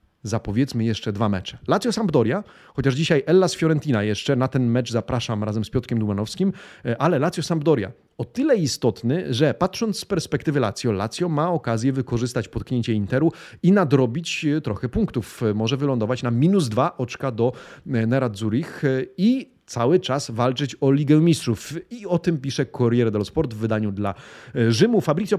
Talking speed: 160 wpm